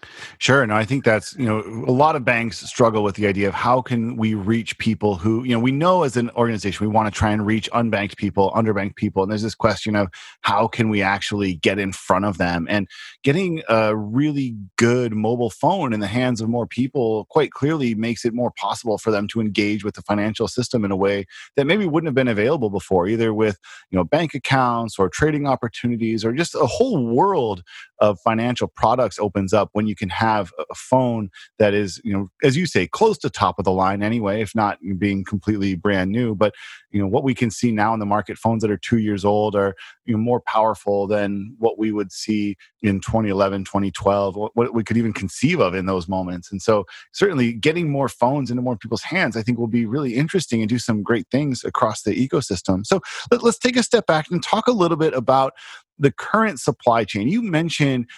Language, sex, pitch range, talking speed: English, male, 105-125 Hz, 225 wpm